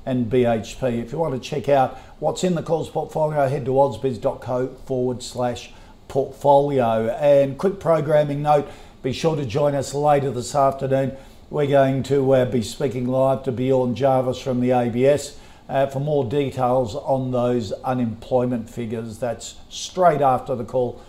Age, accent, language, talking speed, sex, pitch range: 50-69, Australian, English, 160 wpm, male, 125-150 Hz